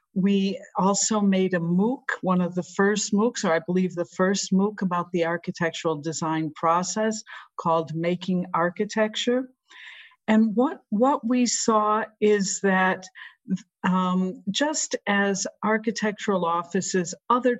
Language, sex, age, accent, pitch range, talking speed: English, female, 50-69, American, 170-205 Hz, 125 wpm